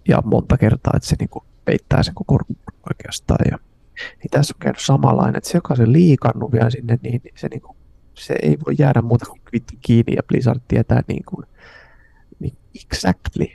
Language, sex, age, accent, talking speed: Finnish, male, 30-49, native, 175 wpm